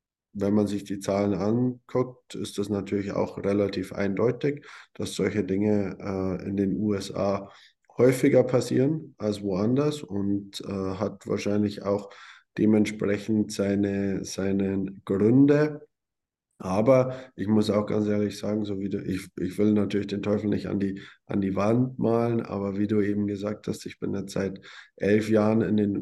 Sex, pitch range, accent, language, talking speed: male, 100-110 Hz, German, German, 160 wpm